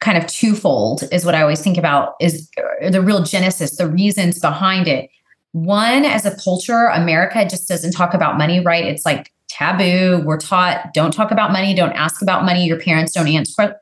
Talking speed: 195 wpm